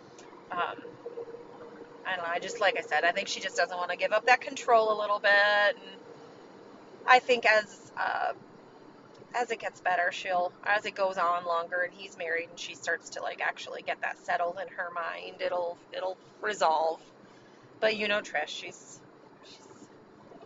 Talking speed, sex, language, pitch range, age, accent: 180 wpm, female, English, 185-255 Hz, 30-49, American